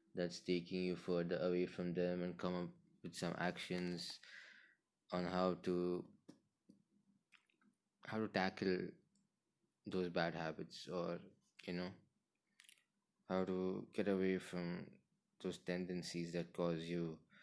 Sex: male